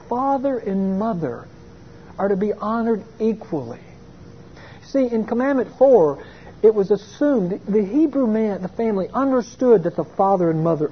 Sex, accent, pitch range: male, American, 160-215 Hz